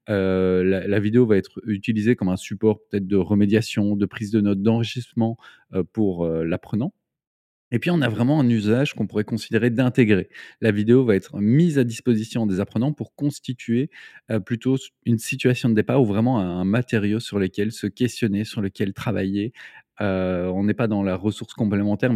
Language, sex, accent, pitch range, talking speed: French, male, French, 95-115 Hz, 185 wpm